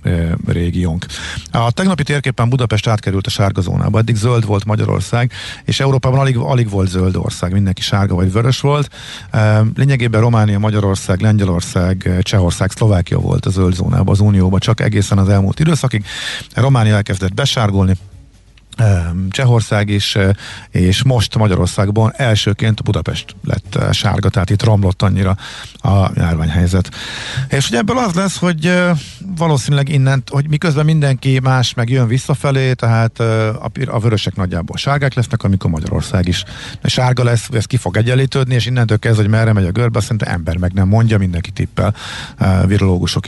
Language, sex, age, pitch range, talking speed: Hungarian, male, 50-69, 95-130 Hz, 145 wpm